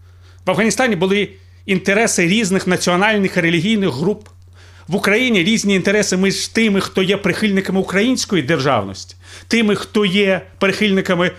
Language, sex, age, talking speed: Ukrainian, male, 40-59, 125 wpm